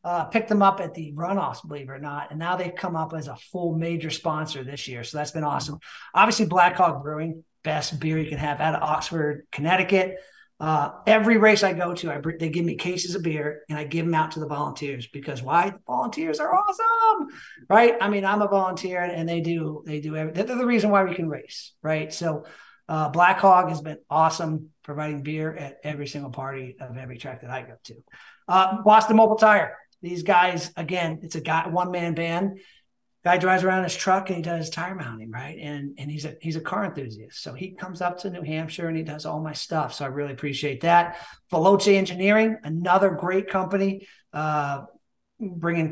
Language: English